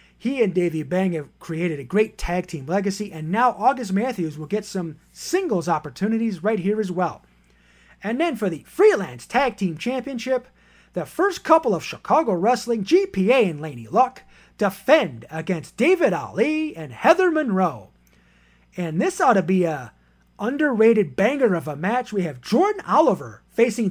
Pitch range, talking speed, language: 165-265 Hz, 165 wpm, English